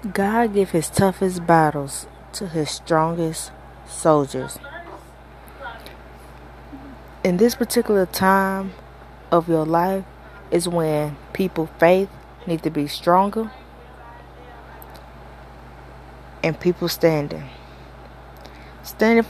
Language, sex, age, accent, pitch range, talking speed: English, female, 20-39, American, 130-190 Hz, 85 wpm